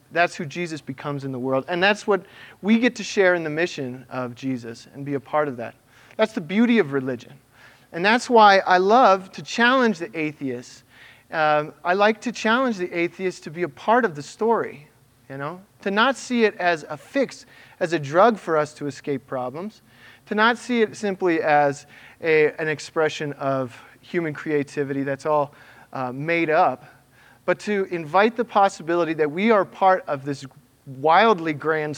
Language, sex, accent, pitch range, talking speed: English, male, American, 135-180 Hz, 185 wpm